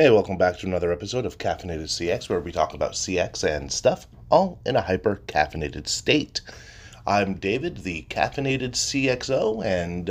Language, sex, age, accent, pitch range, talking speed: English, male, 30-49, American, 90-115 Hz, 160 wpm